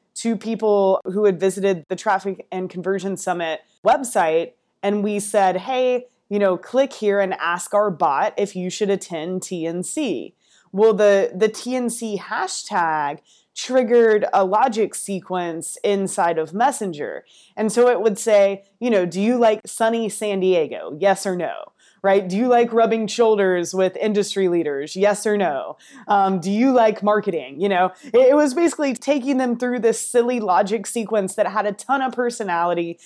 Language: English